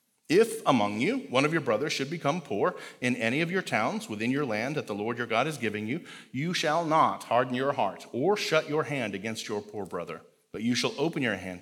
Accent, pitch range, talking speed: American, 120-160 Hz, 240 wpm